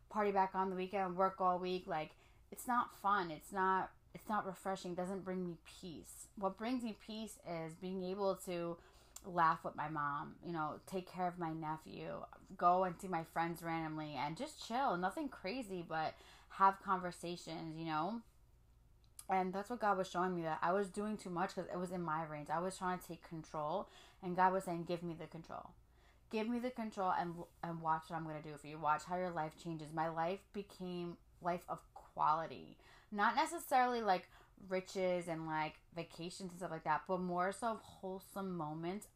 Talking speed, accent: 200 wpm, American